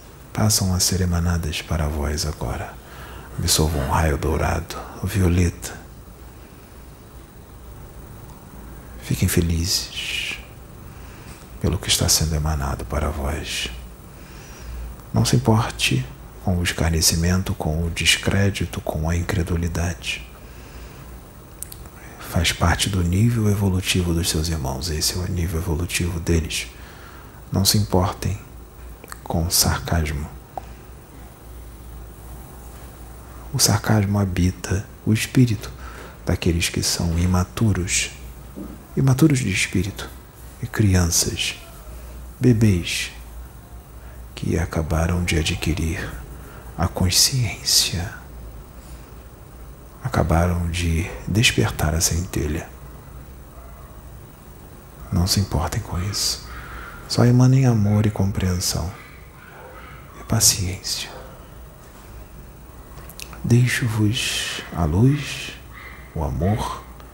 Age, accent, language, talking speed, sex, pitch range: 50-69, Brazilian, Portuguese, 85 wpm, male, 70-95 Hz